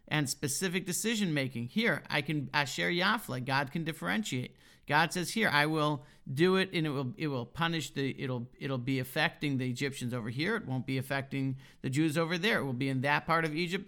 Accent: American